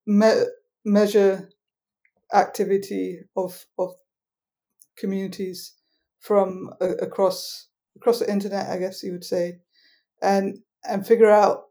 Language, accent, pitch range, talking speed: English, British, 190-215 Hz, 110 wpm